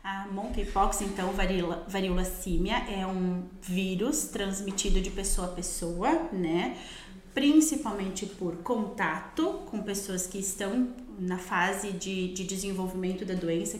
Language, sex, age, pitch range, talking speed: Portuguese, female, 30-49, 195-255 Hz, 125 wpm